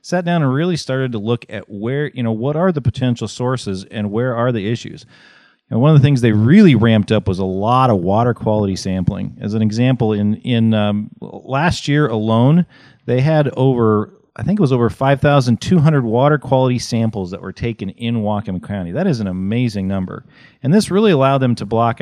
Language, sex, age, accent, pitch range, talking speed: English, male, 40-59, American, 110-135 Hz, 205 wpm